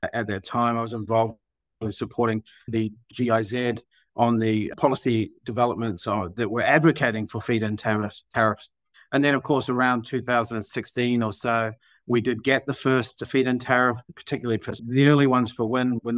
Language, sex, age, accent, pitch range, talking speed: English, male, 50-69, Australian, 110-125 Hz, 165 wpm